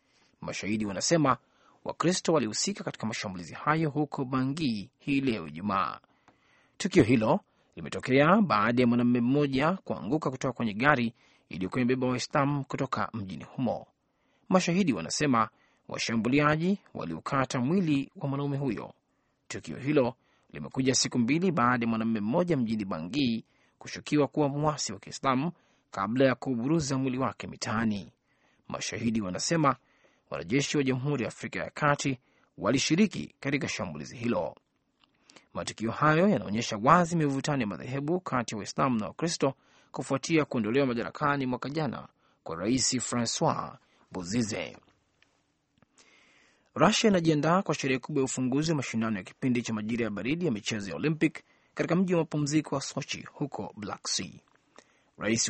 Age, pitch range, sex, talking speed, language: 30-49, 120-155 Hz, male, 130 wpm, Swahili